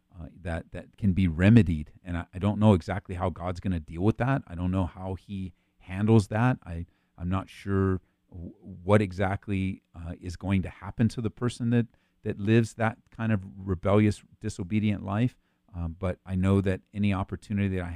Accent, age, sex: American, 40-59, male